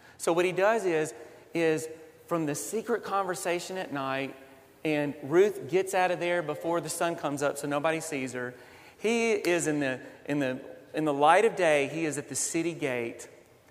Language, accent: English, American